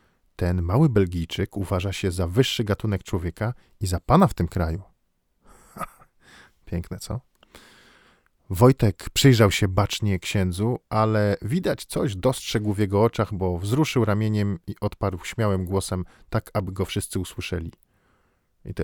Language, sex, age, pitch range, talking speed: Polish, male, 40-59, 95-130 Hz, 135 wpm